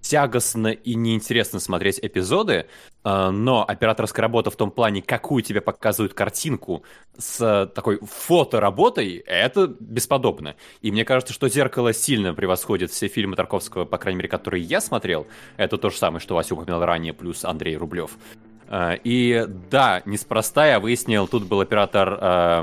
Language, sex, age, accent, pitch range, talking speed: Russian, male, 20-39, native, 100-120 Hz, 235 wpm